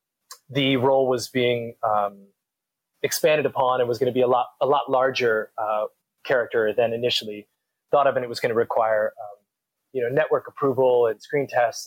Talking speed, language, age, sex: 185 wpm, English, 20-39, male